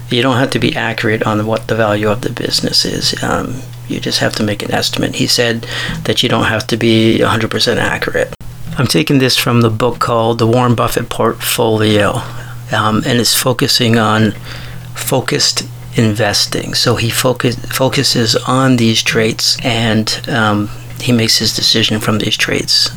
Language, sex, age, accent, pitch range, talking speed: English, male, 40-59, American, 110-125 Hz, 170 wpm